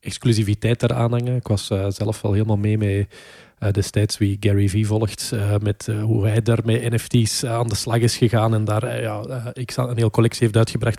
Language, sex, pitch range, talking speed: Dutch, male, 105-125 Hz, 220 wpm